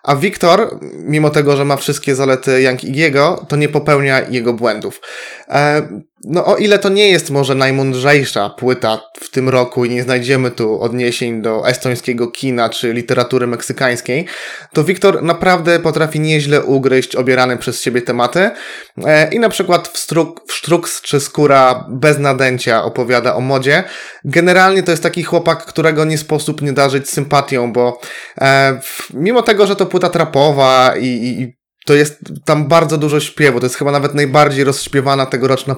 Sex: male